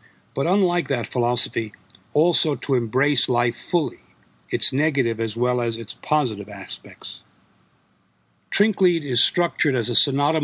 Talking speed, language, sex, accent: 130 wpm, English, male, American